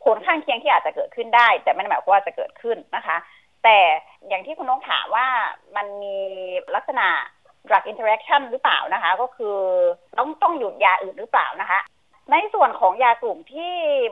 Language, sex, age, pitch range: Thai, female, 30-49, 195-290 Hz